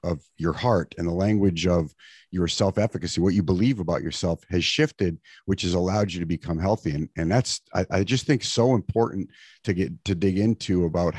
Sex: male